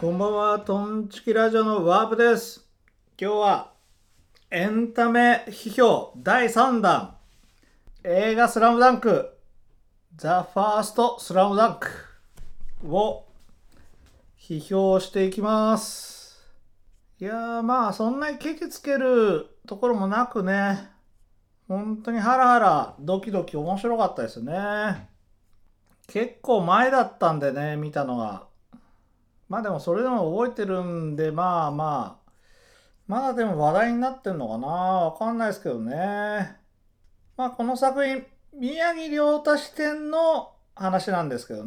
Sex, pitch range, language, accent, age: male, 180-240 Hz, Japanese, native, 40-59